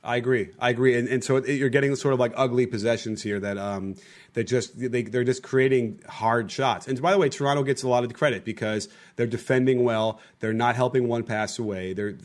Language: English